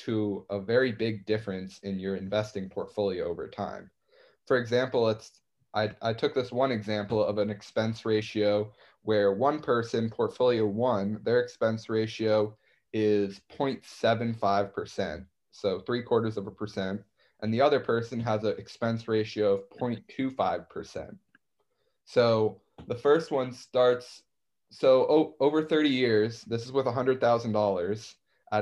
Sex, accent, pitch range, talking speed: male, American, 105-125 Hz, 130 wpm